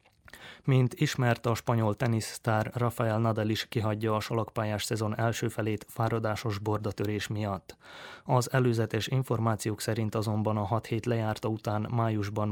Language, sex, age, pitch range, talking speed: Hungarian, male, 20-39, 105-115 Hz, 135 wpm